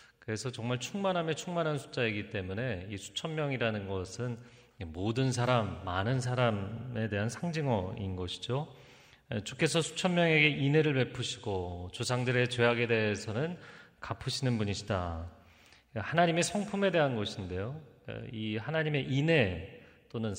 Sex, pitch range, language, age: male, 105-140 Hz, Korean, 40-59